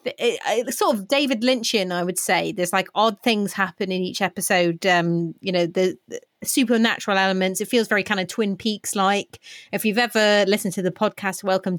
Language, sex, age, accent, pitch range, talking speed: English, female, 30-49, British, 175-205 Hz, 205 wpm